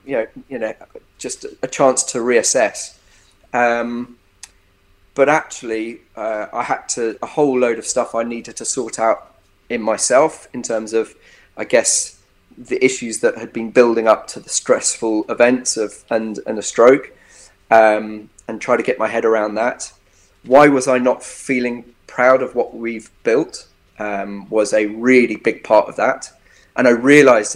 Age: 20-39